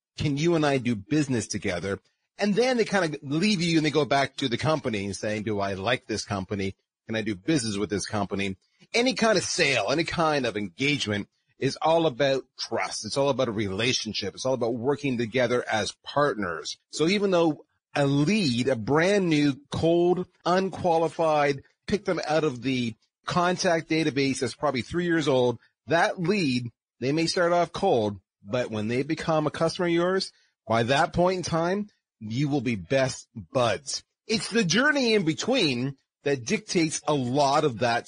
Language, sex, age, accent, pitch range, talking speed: English, male, 30-49, American, 125-170 Hz, 185 wpm